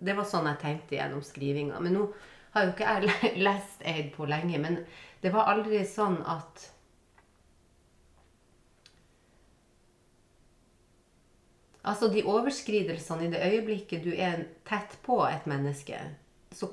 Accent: Swedish